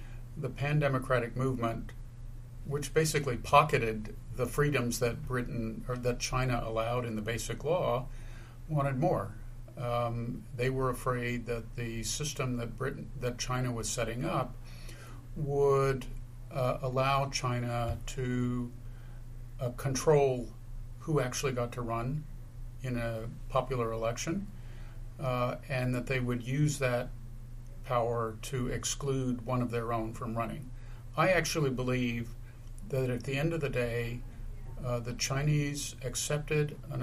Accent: American